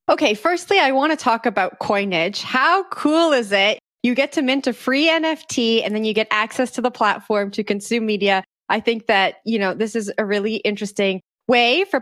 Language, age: English, 20-39